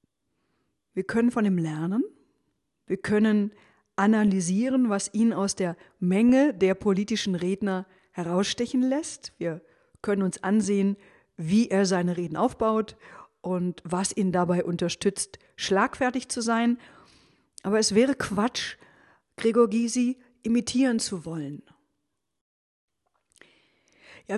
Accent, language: German, German